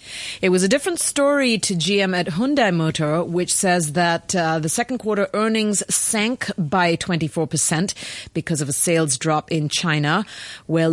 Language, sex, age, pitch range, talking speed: English, female, 30-49, 155-195 Hz, 165 wpm